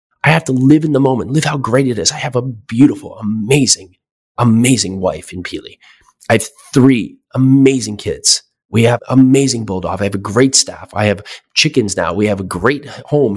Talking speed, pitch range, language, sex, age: 195 wpm, 95-130 Hz, English, male, 30-49